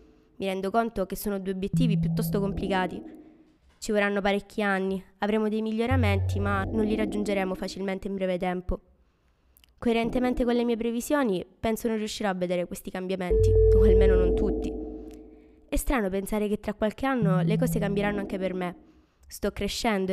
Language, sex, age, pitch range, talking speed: Italian, female, 20-39, 170-225 Hz, 165 wpm